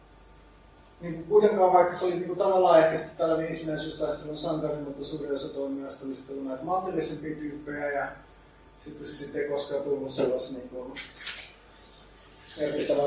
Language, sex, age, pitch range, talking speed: Finnish, male, 30-49, 140-170 Hz, 135 wpm